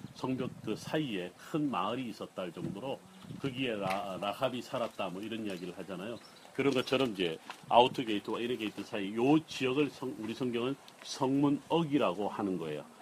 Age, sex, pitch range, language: 40-59, male, 110-150 Hz, Korean